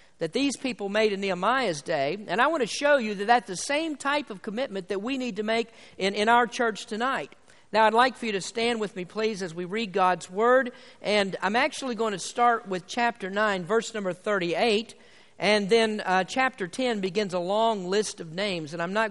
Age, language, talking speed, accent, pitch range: 50-69, English, 225 wpm, American, 185-235 Hz